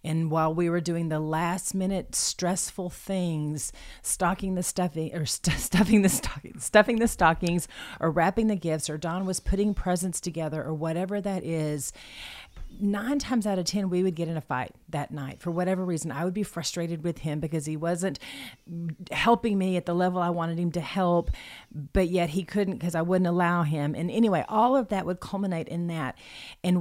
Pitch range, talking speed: 165-200 Hz, 195 wpm